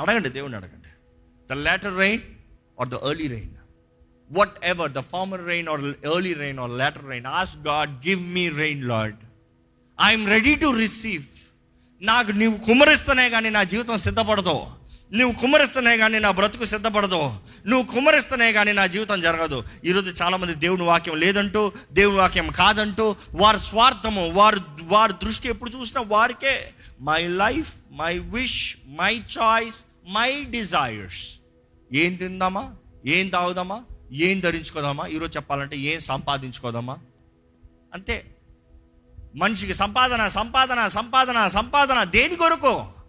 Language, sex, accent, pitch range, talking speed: Telugu, male, native, 135-220 Hz, 130 wpm